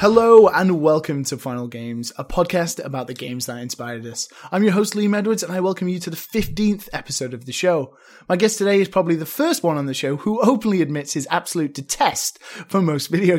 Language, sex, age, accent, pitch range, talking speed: English, male, 20-39, British, 135-185 Hz, 225 wpm